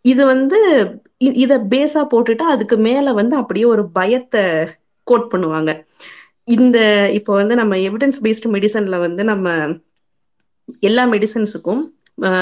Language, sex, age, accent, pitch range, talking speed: Tamil, female, 30-49, native, 185-250 Hz, 115 wpm